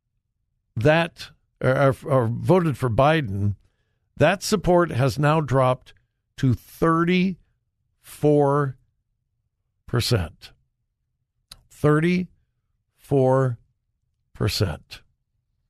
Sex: male